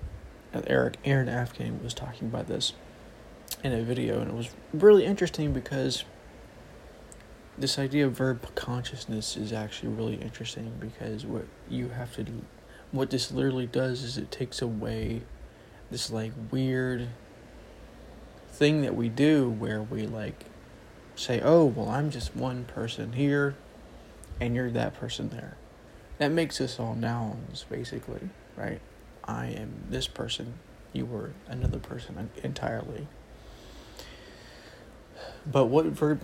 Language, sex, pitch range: English, male, 110-135 Hz